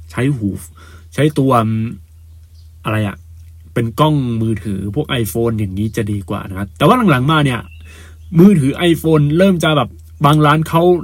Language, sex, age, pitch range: Thai, male, 20-39, 100-150 Hz